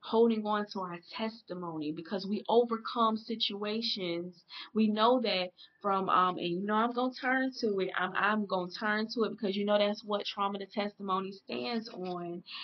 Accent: American